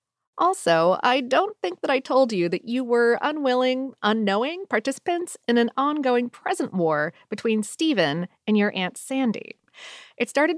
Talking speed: 155 wpm